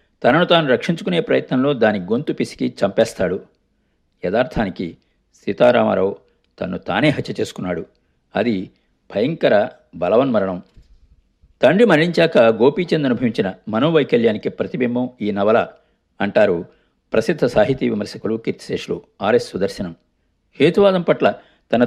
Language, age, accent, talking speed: Telugu, 50-69, native, 95 wpm